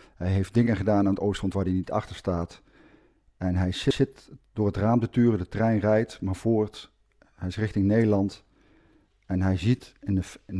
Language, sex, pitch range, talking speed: Dutch, male, 95-115 Hz, 190 wpm